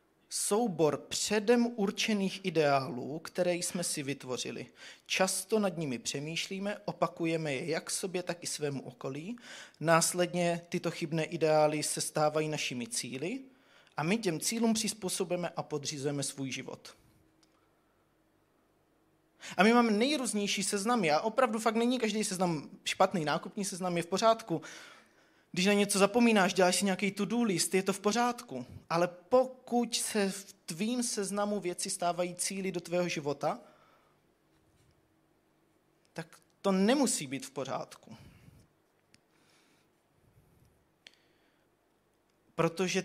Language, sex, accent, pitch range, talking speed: Czech, male, native, 155-205 Hz, 120 wpm